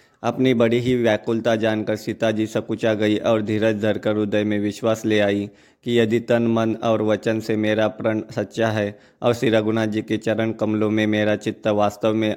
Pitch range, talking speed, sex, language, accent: 105-115 Hz, 195 wpm, male, Hindi, native